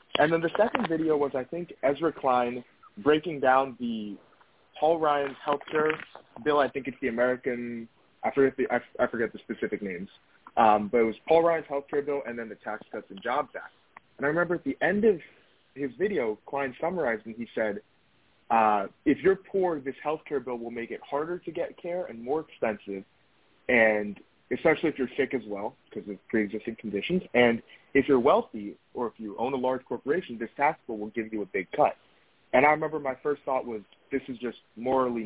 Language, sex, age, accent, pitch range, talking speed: English, male, 20-39, American, 115-150 Hz, 205 wpm